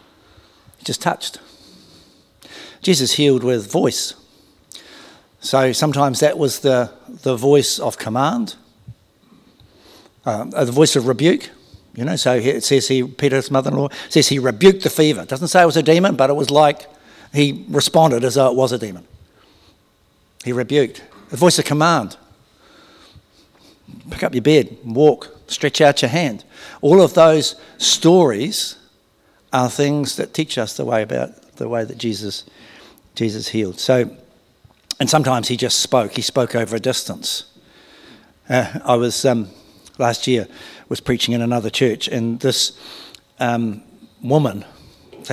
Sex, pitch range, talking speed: male, 115-145 Hz, 145 wpm